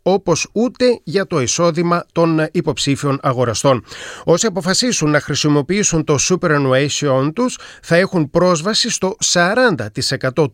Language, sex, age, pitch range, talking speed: Greek, male, 30-49, 130-190 Hz, 115 wpm